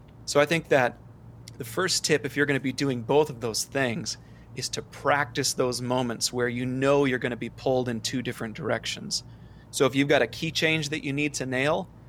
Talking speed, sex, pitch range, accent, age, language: 230 wpm, male, 120-145 Hz, American, 30-49, English